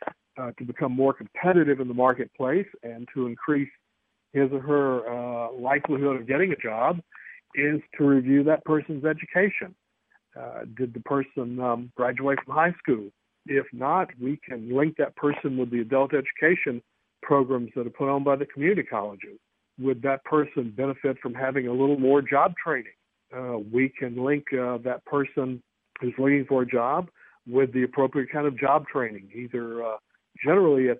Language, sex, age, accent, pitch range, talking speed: English, male, 60-79, American, 125-145 Hz, 170 wpm